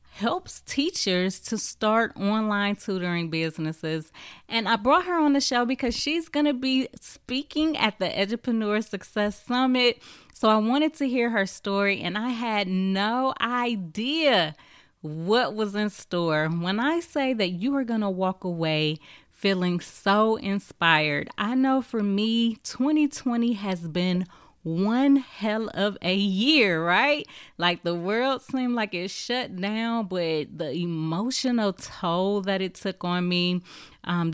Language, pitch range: English, 175-240 Hz